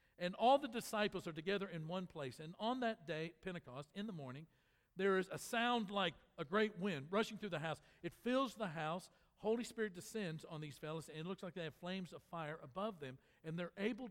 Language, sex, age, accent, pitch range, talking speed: English, male, 50-69, American, 165-215 Hz, 225 wpm